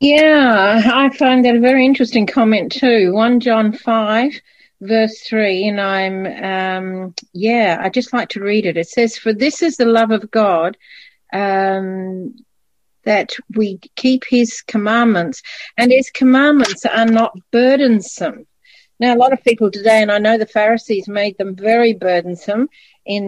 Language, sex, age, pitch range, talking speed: English, female, 50-69, 205-255 Hz, 155 wpm